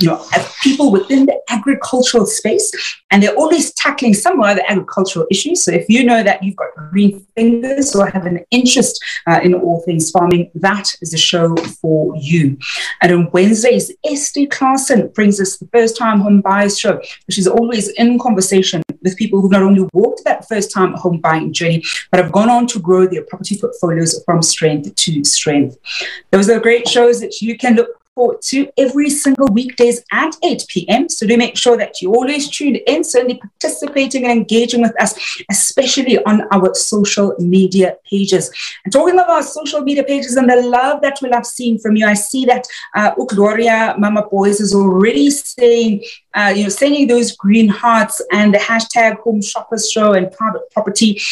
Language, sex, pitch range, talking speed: English, female, 195-245 Hz, 190 wpm